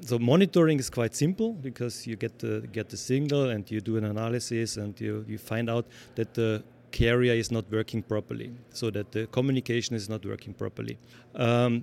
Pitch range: 115-130 Hz